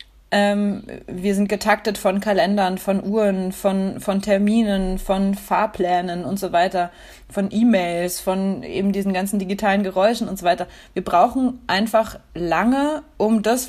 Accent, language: German, German